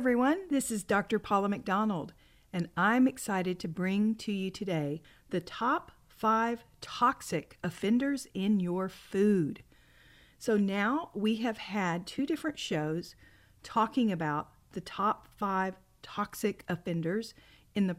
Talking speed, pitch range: 130 wpm, 175-215 Hz